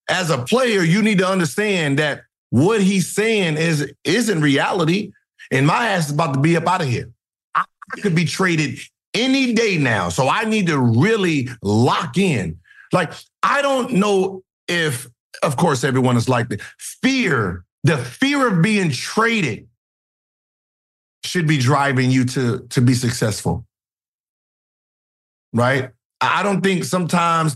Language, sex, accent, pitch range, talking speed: English, male, American, 130-190 Hz, 150 wpm